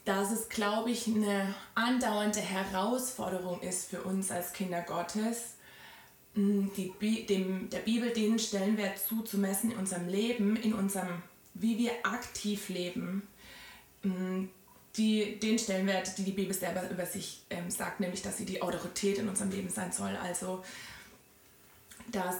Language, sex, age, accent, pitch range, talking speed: German, female, 20-39, German, 190-215 Hz, 140 wpm